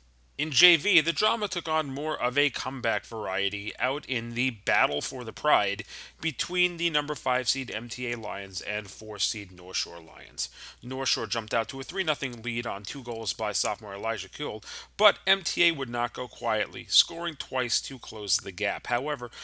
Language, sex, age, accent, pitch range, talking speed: English, male, 30-49, American, 115-150 Hz, 180 wpm